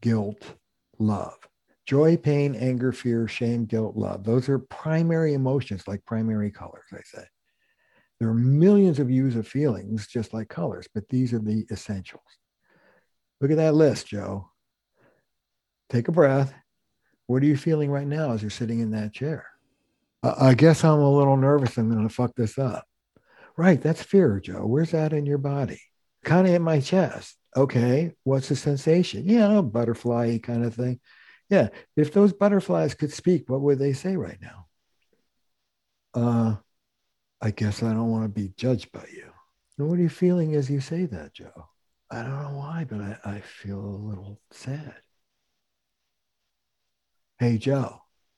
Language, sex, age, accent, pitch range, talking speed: English, male, 60-79, American, 110-145 Hz, 165 wpm